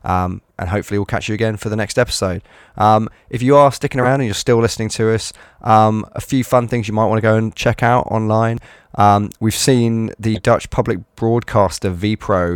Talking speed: 215 wpm